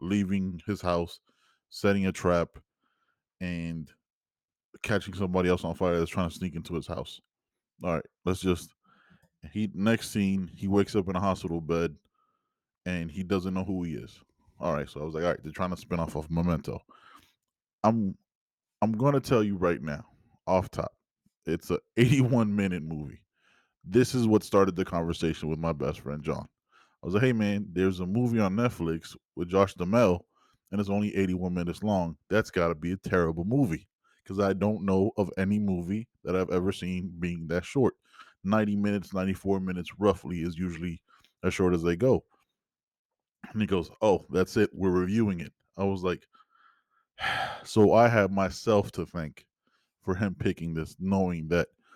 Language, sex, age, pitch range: English, male, 10-29, 85-105 Hz